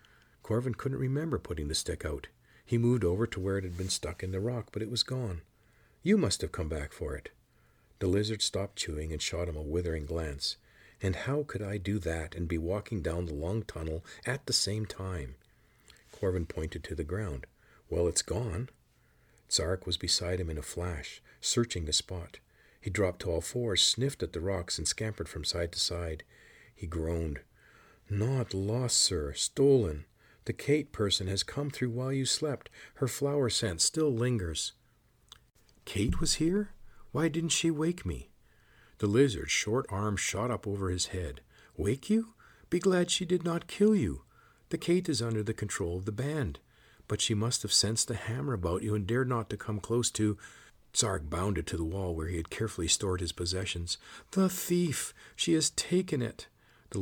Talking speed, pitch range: 190 wpm, 90-125 Hz